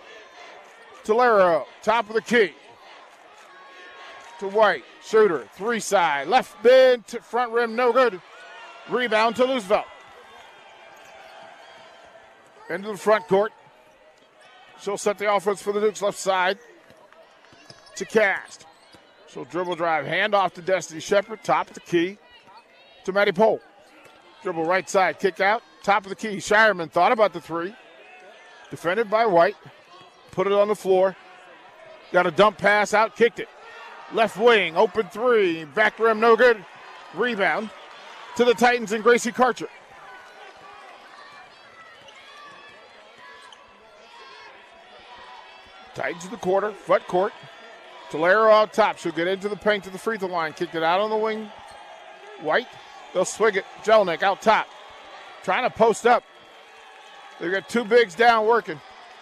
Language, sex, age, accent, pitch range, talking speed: English, male, 40-59, American, 190-225 Hz, 135 wpm